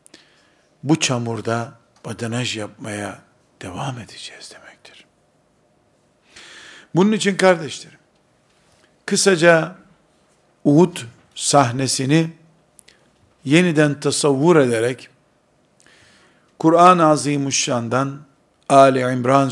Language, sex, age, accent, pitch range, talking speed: Turkish, male, 50-69, native, 125-165 Hz, 60 wpm